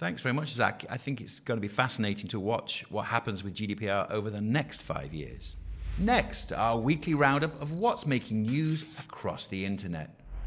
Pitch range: 105-145 Hz